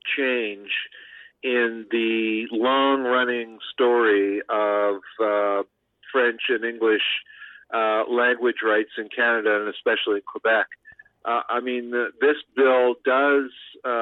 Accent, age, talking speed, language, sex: American, 50-69, 105 wpm, English, male